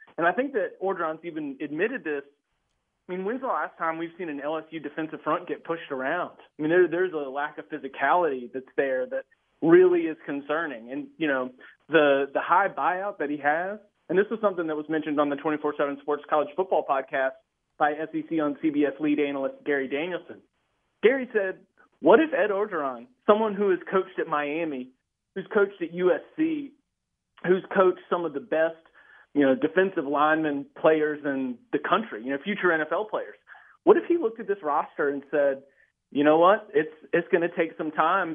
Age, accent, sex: 30-49, American, male